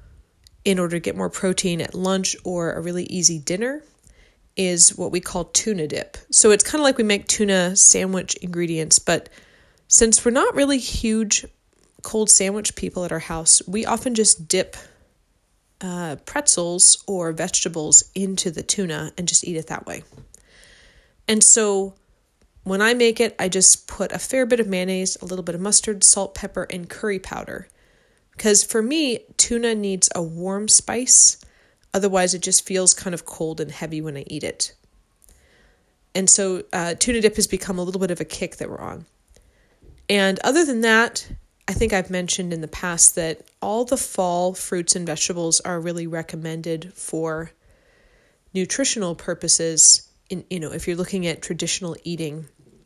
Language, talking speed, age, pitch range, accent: English, 175 wpm, 30-49, 170-205 Hz, American